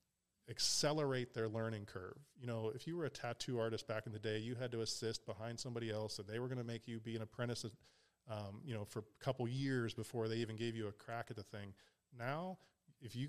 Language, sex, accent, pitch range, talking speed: English, male, American, 110-130 Hz, 240 wpm